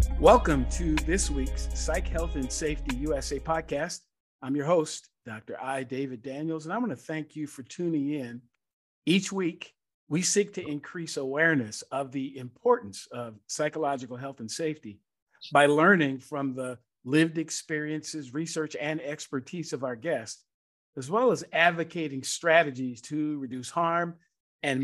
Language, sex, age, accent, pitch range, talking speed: English, male, 50-69, American, 135-165 Hz, 150 wpm